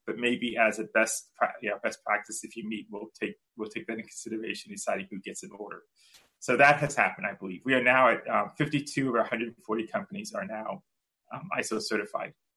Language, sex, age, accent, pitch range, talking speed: English, male, 30-49, American, 110-145 Hz, 210 wpm